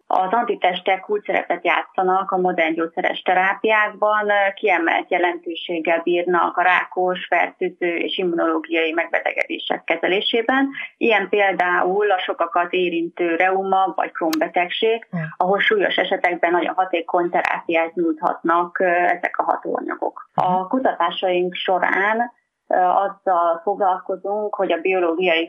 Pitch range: 170-205 Hz